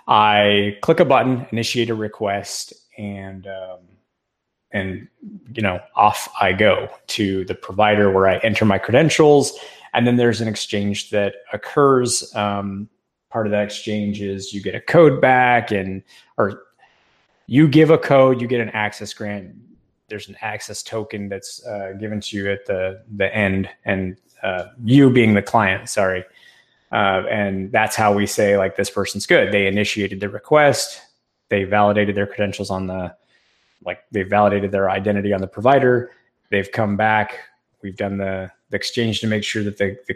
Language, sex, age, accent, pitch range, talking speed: English, male, 20-39, American, 100-115 Hz, 170 wpm